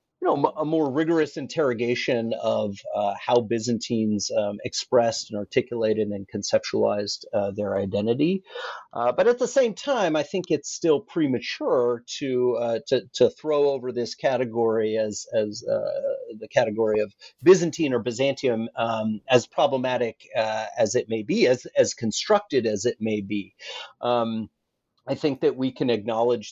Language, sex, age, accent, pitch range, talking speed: English, male, 40-59, American, 110-140 Hz, 155 wpm